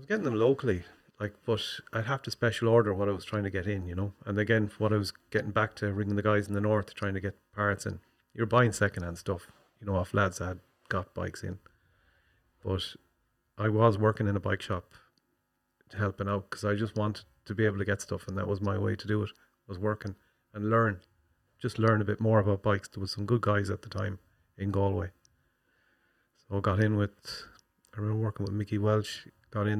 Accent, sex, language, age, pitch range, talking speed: Irish, male, English, 30-49, 100-110 Hz, 235 wpm